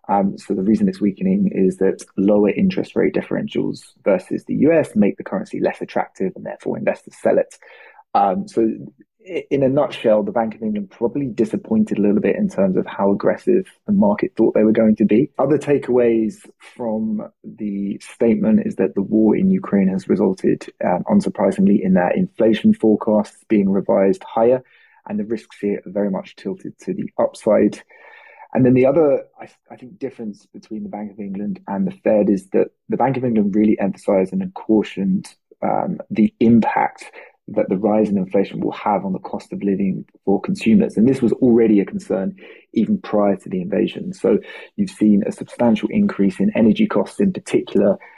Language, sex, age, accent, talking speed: English, male, 20-39, British, 185 wpm